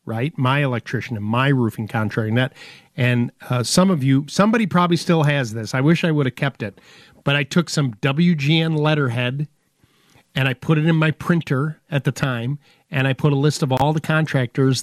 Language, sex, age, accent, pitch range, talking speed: English, male, 50-69, American, 130-160 Hz, 200 wpm